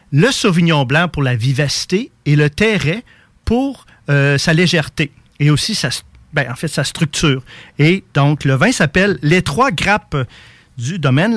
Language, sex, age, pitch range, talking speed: French, male, 40-59, 135-180 Hz, 165 wpm